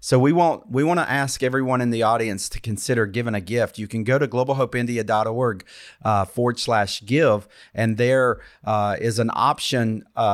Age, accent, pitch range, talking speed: 50-69, American, 110-135 Hz, 180 wpm